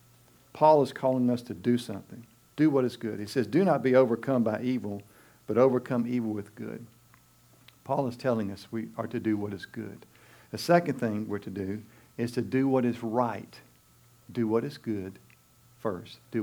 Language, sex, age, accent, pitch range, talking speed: English, male, 50-69, American, 105-130 Hz, 195 wpm